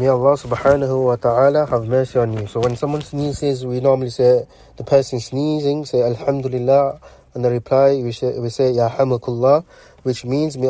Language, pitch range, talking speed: English, 120-140 Hz, 185 wpm